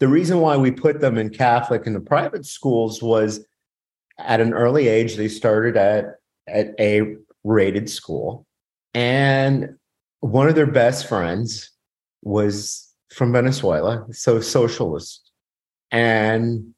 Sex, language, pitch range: male, English, 110-135 Hz